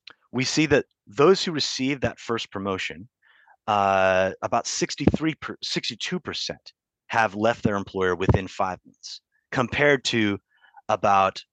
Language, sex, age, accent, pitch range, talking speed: English, male, 30-49, American, 100-135 Hz, 120 wpm